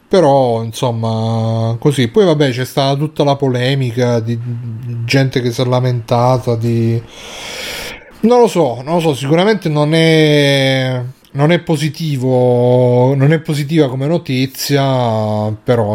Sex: male